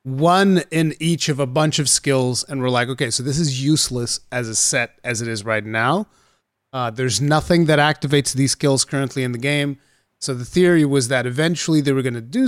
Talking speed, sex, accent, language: 220 wpm, male, American, English